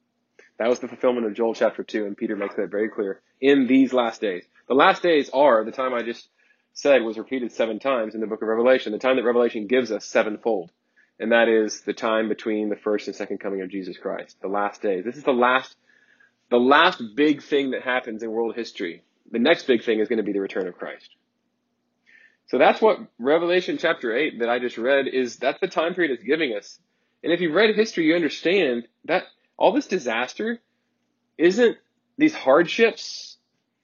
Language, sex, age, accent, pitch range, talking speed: English, male, 30-49, American, 115-185 Hz, 205 wpm